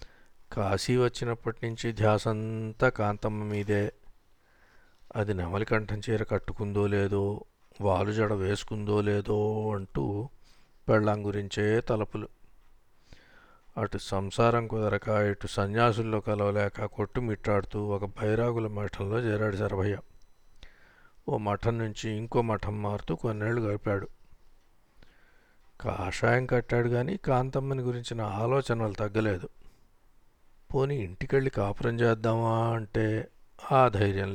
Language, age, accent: Telugu, 50-69, native